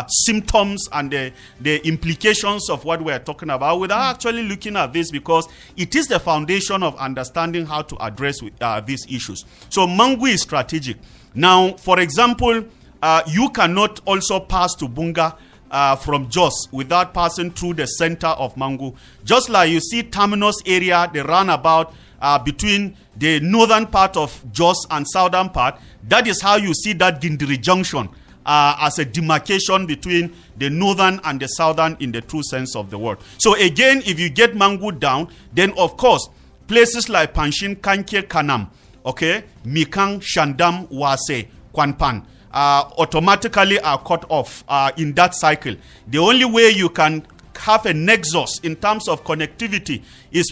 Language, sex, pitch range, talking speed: English, male, 145-195 Hz, 165 wpm